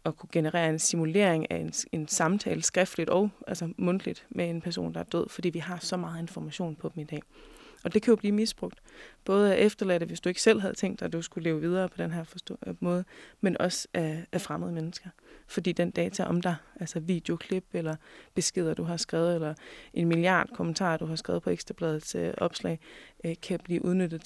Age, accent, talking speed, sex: 20-39, native, 220 wpm, female